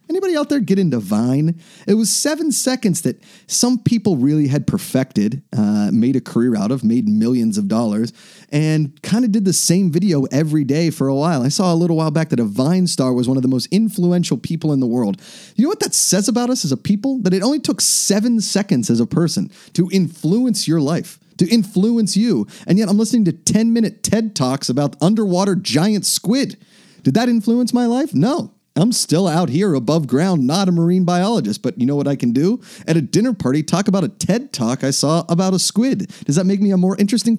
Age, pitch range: 30-49, 150-215 Hz